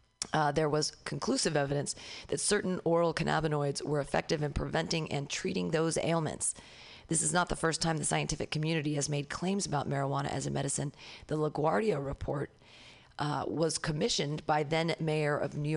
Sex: female